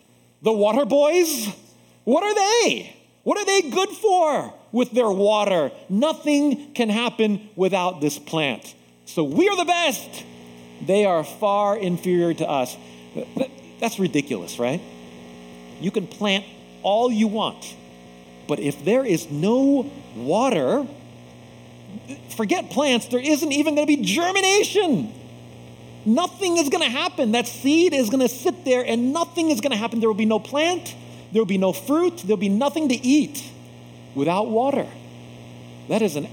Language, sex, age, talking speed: English, male, 40-59, 155 wpm